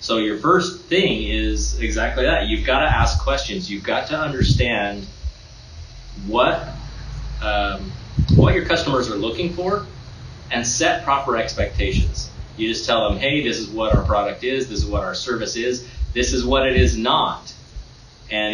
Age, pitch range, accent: 30-49, 100-125 Hz, American